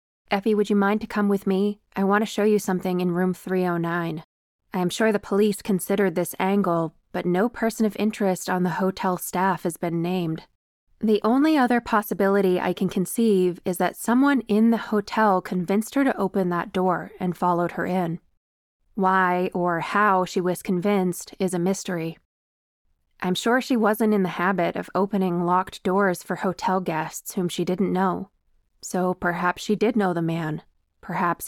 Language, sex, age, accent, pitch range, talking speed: English, female, 20-39, American, 180-205 Hz, 180 wpm